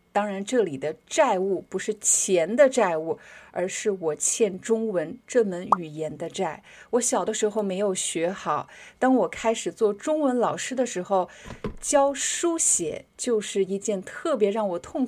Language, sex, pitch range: Chinese, female, 190-255 Hz